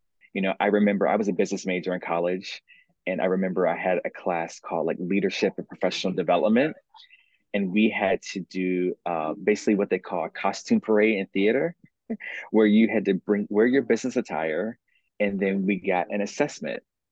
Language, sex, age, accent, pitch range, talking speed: English, male, 30-49, American, 90-110 Hz, 190 wpm